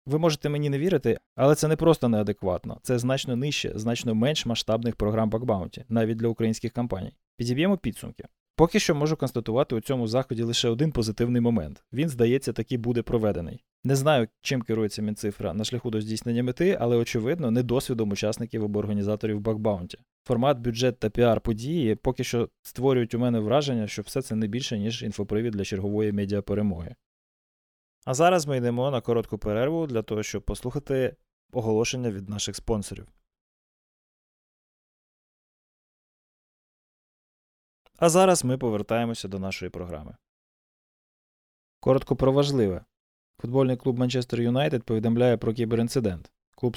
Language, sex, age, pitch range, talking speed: Ukrainian, male, 20-39, 105-125 Hz, 140 wpm